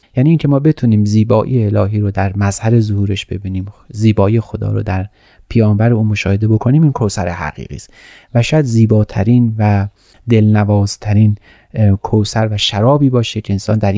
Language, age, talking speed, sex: Persian, 30-49, 150 wpm, male